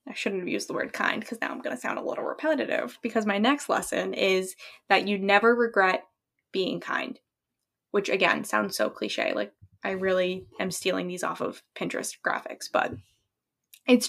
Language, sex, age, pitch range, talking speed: English, female, 10-29, 200-255 Hz, 190 wpm